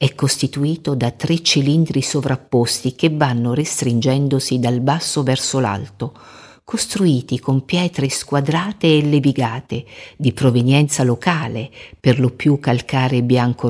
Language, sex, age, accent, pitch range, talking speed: Italian, female, 50-69, native, 125-150 Hz, 120 wpm